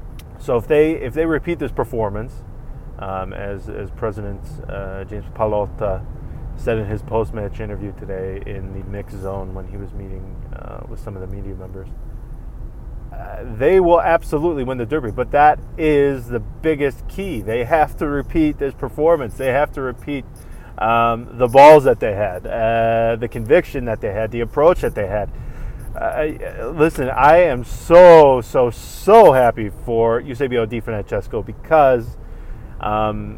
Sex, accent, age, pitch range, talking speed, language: male, American, 30-49, 105-135 Hz, 160 wpm, English